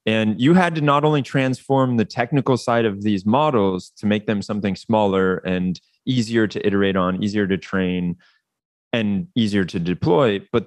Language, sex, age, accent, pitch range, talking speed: English, male, 20-39, American, 100-135 Hz, 175 wpm